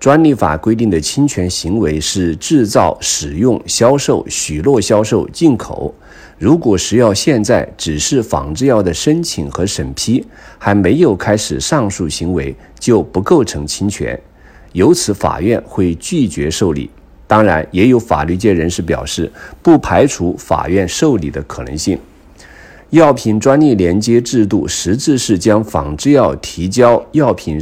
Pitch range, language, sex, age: 80-120 Hz, Chinese, male, 50-69